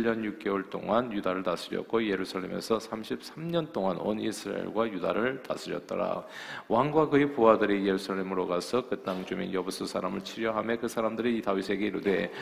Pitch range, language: 95-120 Hz, Korean